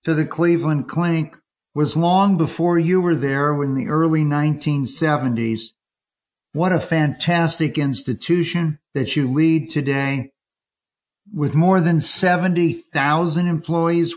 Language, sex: English, male